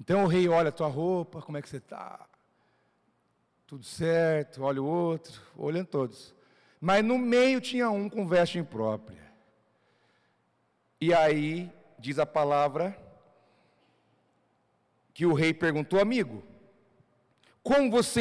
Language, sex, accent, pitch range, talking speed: Portuguese, male, Brazilian, 140-200 Hz, 130 wpm